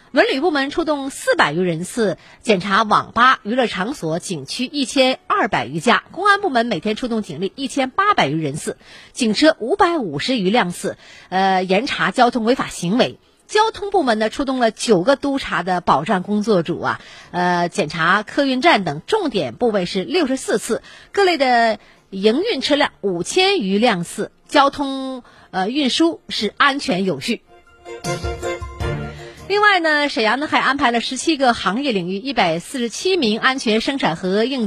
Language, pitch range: Chinese, 200-285 Hz